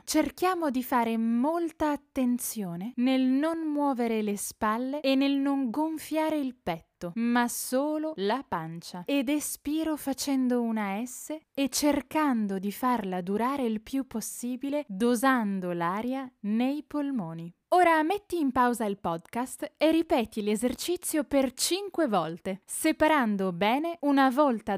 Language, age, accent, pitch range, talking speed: Italian, 10-29, native, 215-295 Hz, 130 wpm